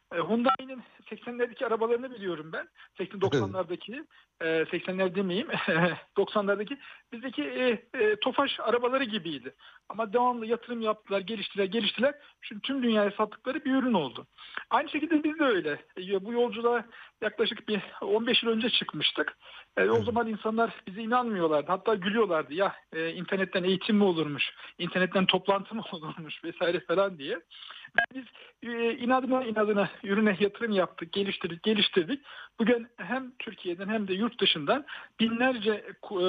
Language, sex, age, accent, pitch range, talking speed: Turkish, male, 50-69, native, 195-245 Hz, 130 wpm